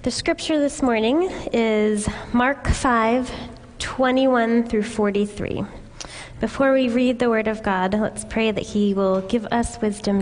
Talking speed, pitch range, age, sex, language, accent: 145 wpm, 205-240 Hz, 20-39, female, English, American